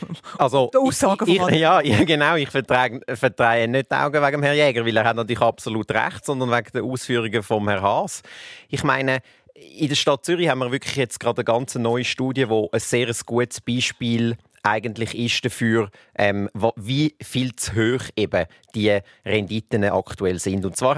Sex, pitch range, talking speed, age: male, 115-150 Hz, 170 wpm, 30-49